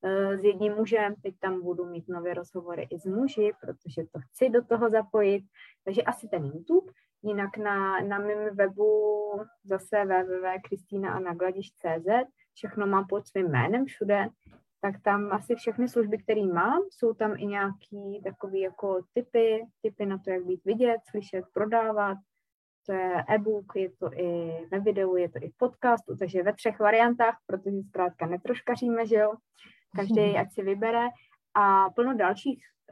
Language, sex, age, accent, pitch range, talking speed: Czech, female, 20-39, native, 195-230 Hz, 155 wpm